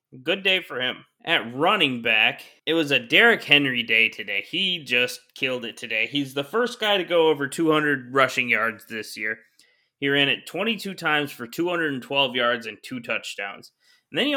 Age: 20-39